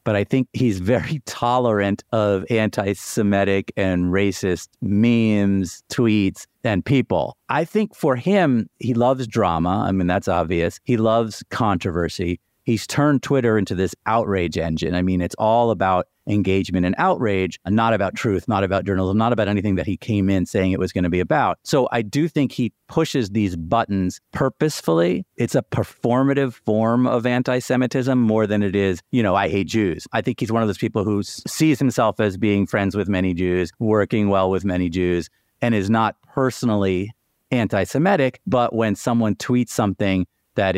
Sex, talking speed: male, 175 wpm